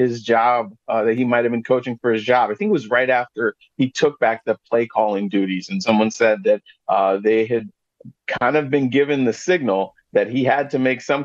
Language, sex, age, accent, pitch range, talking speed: English, male, 40-59, American, 115-145 Hz, 230 wpm